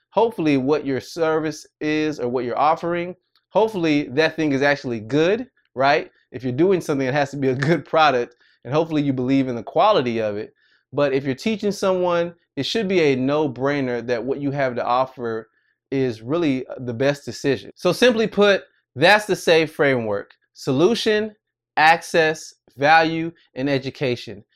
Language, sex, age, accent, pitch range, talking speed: English, male, 20-39, American, 125-160 Hz, 170 wpm